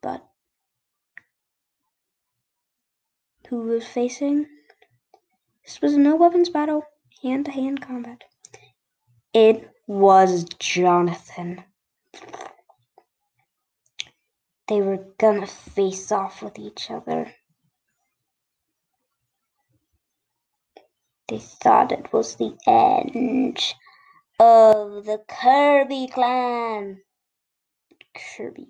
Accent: American